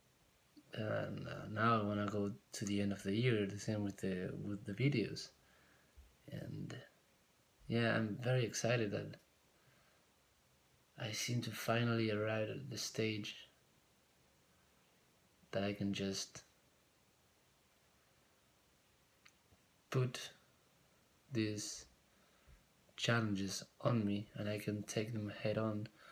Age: 20-39